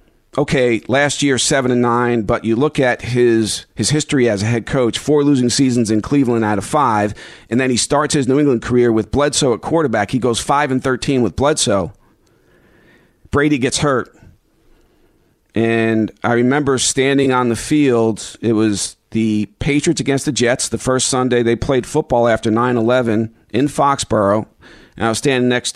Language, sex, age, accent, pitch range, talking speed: English, male, 40-59, American, 110-135 Hz, 175 wpm